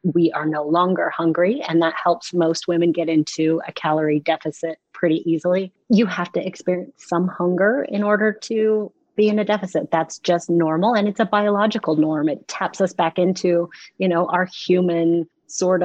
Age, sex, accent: 30-49, female, American